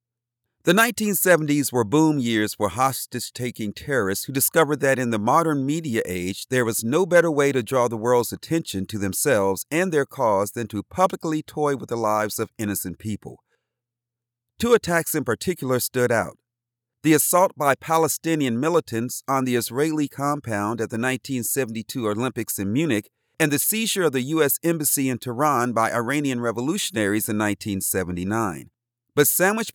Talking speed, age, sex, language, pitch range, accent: 155 wpm, 40-59, male, English, 115-155 Hz, American